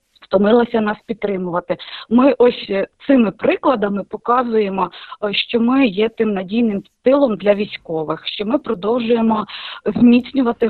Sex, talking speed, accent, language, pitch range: female, 110 wpm, native, Ukrainian, 200-245 Hz